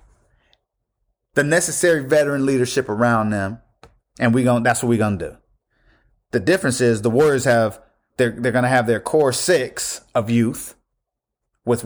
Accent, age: American, 30-49